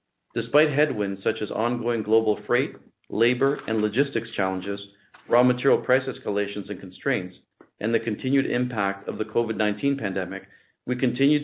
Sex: male